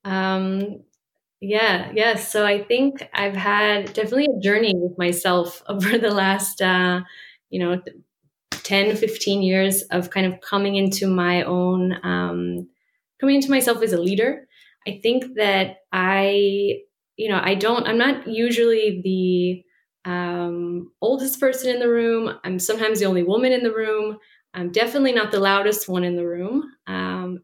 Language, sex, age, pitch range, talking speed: English, female, 20-39, 185-235 Hz, 155 wpm